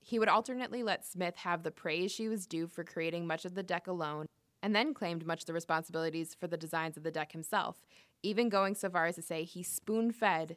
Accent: American